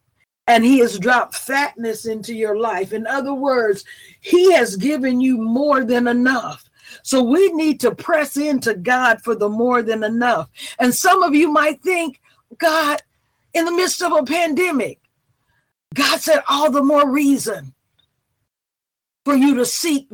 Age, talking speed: 50-69, 160 wpm